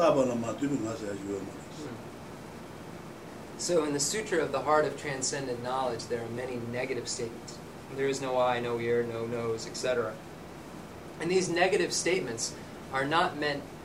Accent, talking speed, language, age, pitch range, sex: American, 135 wpm, English, 30-49, 115-150 Hz, male